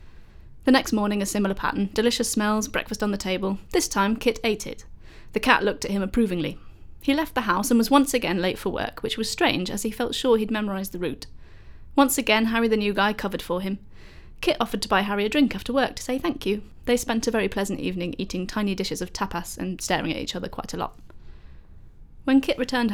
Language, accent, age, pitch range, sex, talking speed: English, British, 30-49, 190-240 Hz, female, 235 wpm